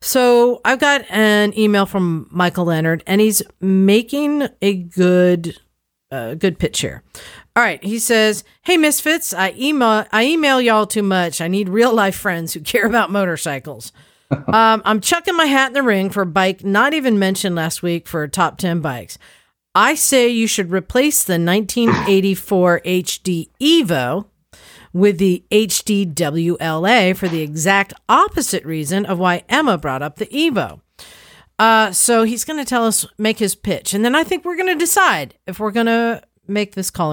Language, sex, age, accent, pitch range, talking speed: English, female, 50-69, American, 170-230 Hz, 170 wpm